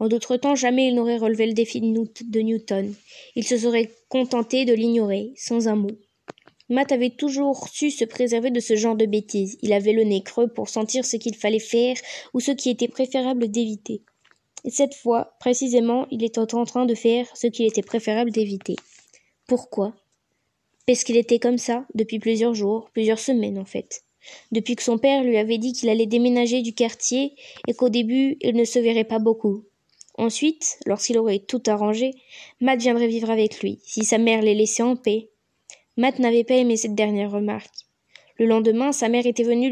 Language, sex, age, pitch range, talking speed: French, female, 20-39, 225-255 Hz, 190 wpm